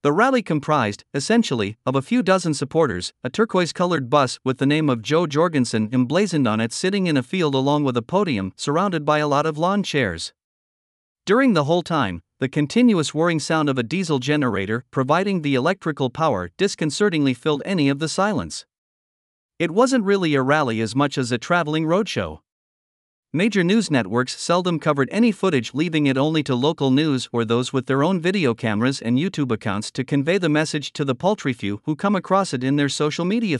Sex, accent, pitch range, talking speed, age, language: male, American, 130-175 Hz, 195 wpm, 50-69, English